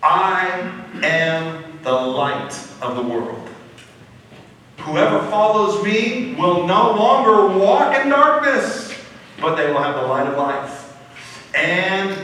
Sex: male